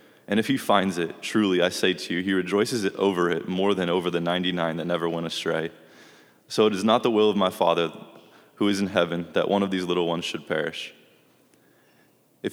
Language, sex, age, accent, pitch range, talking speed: English, male, 20-39, American, 85-100 Hz, 215 wpm